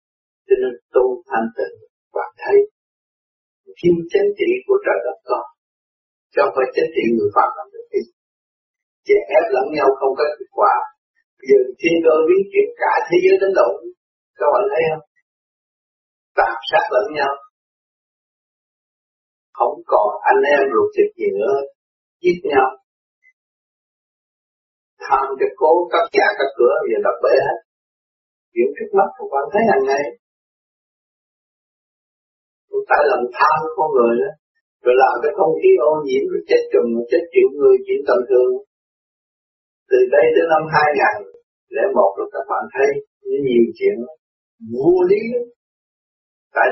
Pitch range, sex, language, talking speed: 270-420 Hz, male, Vietnamese, 150 wpm